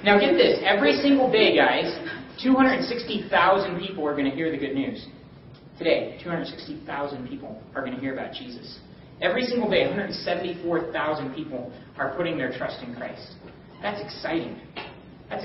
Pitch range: 140-190 Hz